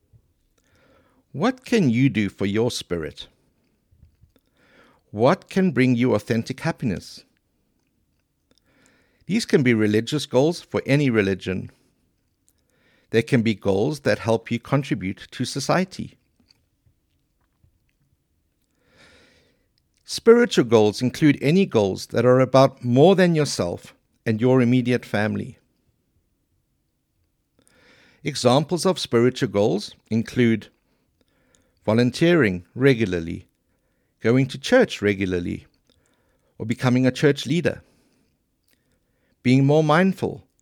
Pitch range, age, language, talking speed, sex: 110-155 Hz, 60-79, English, 95 wpm, male